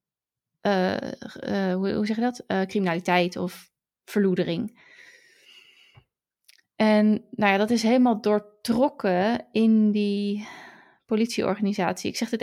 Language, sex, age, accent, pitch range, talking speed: Dutch, female, 20-39, Dutch, 200-230 Hz, 110 wpm